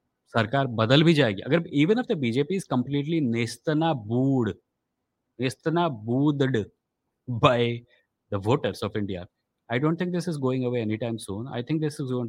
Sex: male